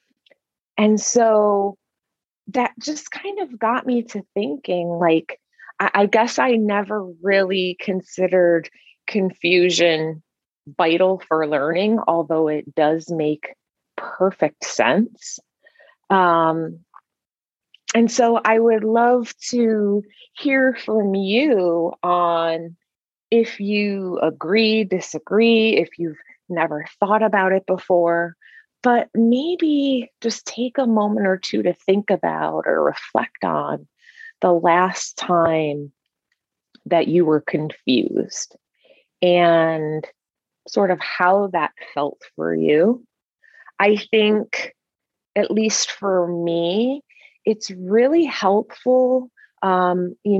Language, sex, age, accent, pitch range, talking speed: English, female, 30-49, American, 175-230 Hz, 105 wpm